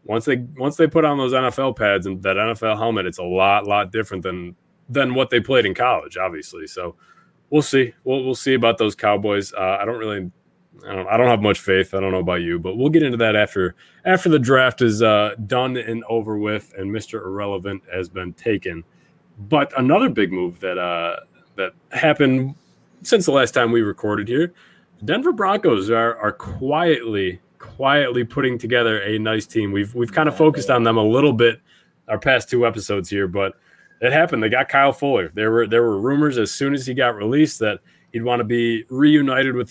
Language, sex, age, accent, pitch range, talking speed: English, male, 20-39, American, 105-140 Hz, 220 wpm